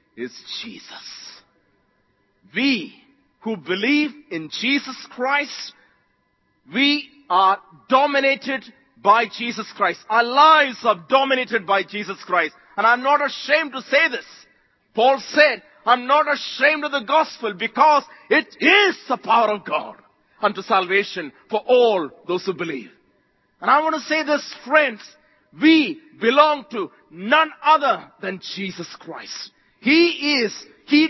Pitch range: 180-290 Hz